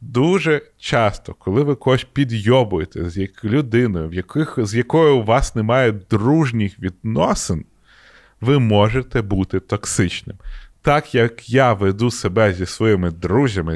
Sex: male